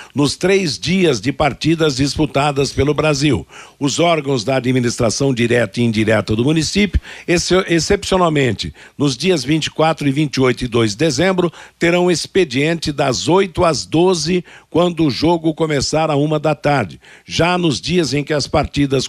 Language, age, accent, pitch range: Portuguese, 60-79, Brazilian, 135-175 Hz